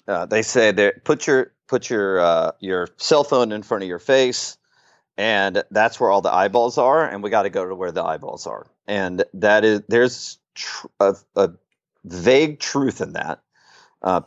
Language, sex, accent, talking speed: English, male, American, 185 wpm